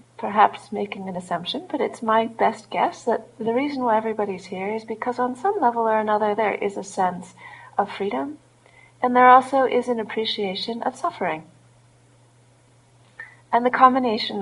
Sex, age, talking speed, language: female, 40-59, 160 wpm, English